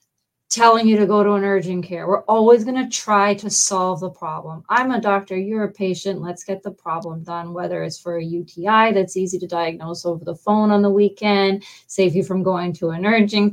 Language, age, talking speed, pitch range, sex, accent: English, 30-49, 220 wpm, 170-205 Hz, female, American